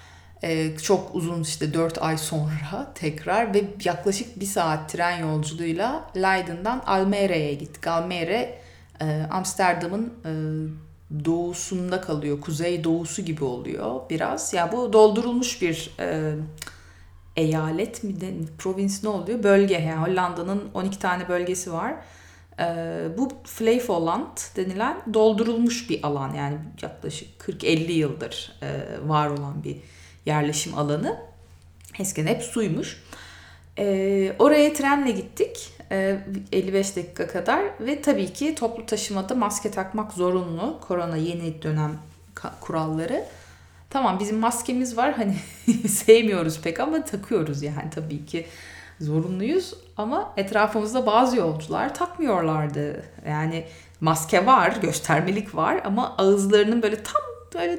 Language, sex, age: Turkish, female, 30-49